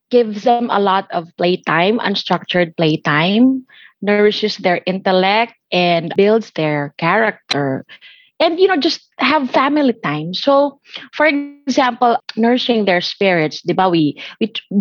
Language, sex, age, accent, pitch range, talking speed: English, female, 20-39, Filipino, 190-275 Hz, 120 wpm